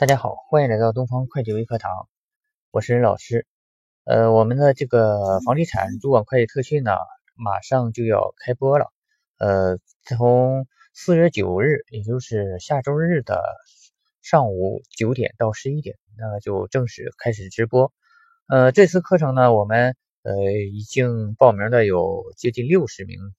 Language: Chinese